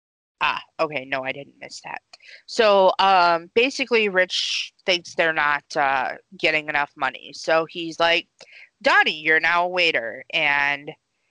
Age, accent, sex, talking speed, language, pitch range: 30-49, American, female, 145 wpm, English, 145-190 Hz